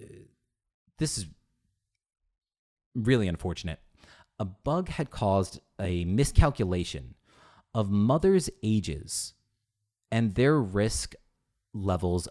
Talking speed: 85 wpm